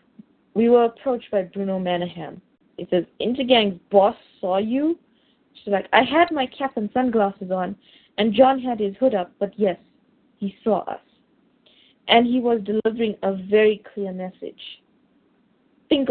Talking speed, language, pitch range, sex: 155 wpm, English, 195-250 Hz, female